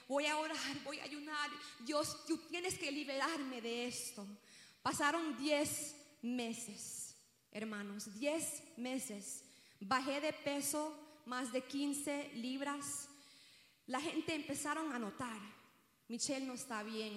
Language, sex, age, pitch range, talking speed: English, female, 30-49, 230-290 Hz, 120 wpm